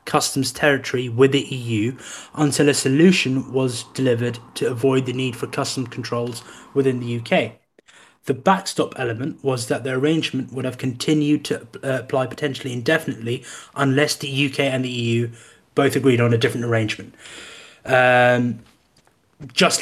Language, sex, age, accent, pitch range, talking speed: English, male, 20-39, British, 125-150 Hz, 145 wpm